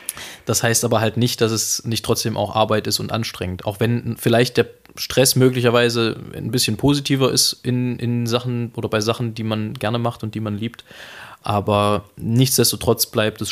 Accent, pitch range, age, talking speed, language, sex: German, 100-115 Hz, 20-39, 185 wpm, German, male